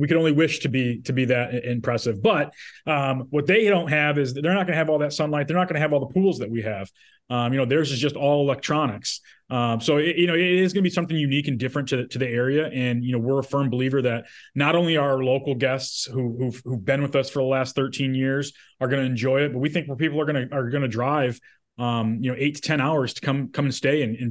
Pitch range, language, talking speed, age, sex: 125-155 Hz, English, 285 wpm, 20-39, male